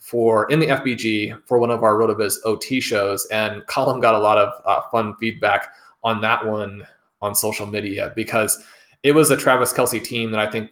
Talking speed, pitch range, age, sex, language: 200 wpm, 110-130 Hz, 20-39, male, English